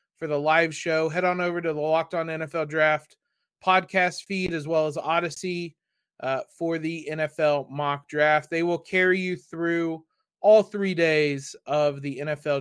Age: 20-39